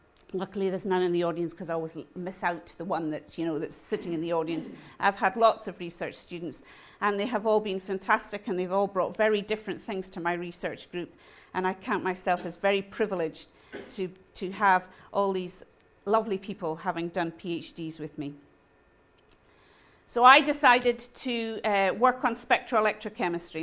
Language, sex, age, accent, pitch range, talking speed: English, female, 50-69, British, 180-220 Hz, 180 wpm